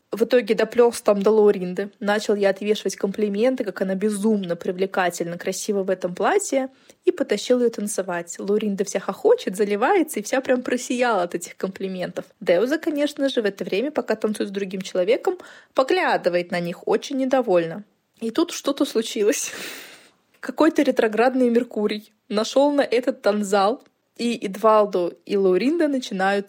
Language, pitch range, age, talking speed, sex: Russian, 195-260 Hz, 20-39, 145 wpm, female